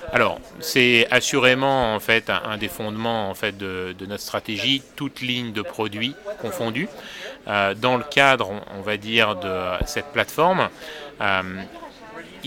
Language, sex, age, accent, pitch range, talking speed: French, male, 30-49, French, 105-135 Hz, 145 wpm